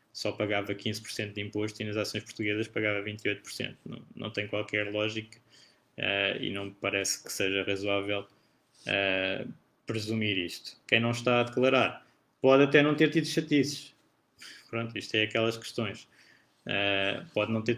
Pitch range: 110-125 Hz